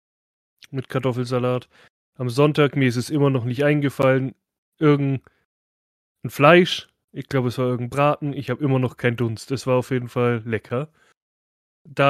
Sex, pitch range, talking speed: male, 120-140 Hz, 160 wpm